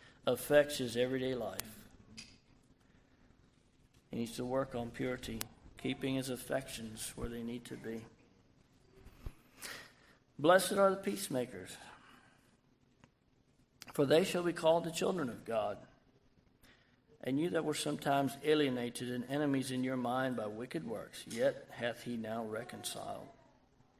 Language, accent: English, American